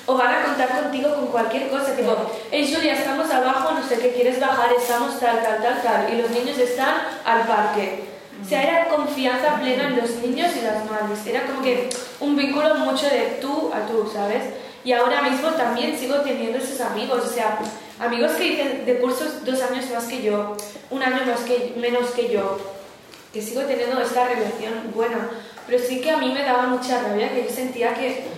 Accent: Spanish